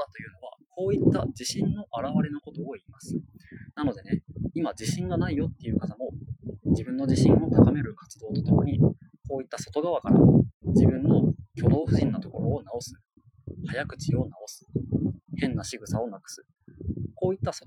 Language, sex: Japanese, male